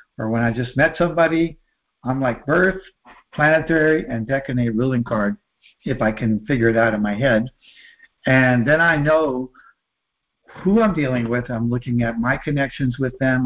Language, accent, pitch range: English, American, 115-160 Hz